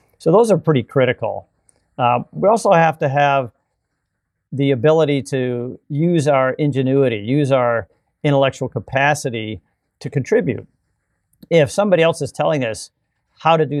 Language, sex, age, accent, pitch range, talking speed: English, male, 50-69, American, 120-150 Hz, 140 wpm